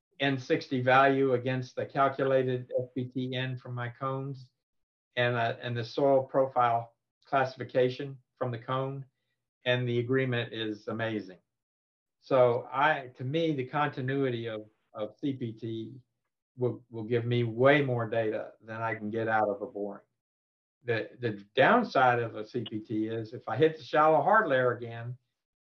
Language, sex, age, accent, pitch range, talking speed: English, male, 50-69, American, 115-135 Hz, 145 wpm